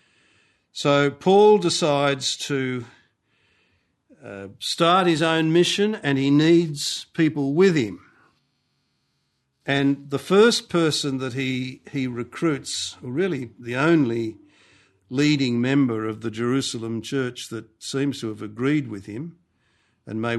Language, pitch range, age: English, 110-145 Hz, 50-69